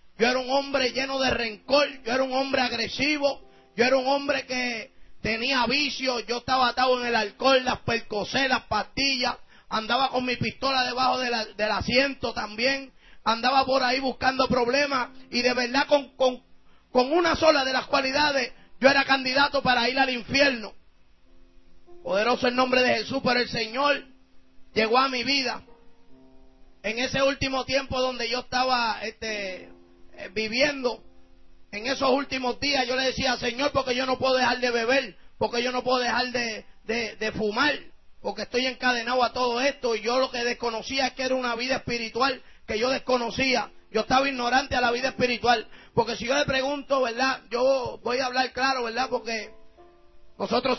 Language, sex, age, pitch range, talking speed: English, male, 30-49, 235-265 Hz, 175 wpm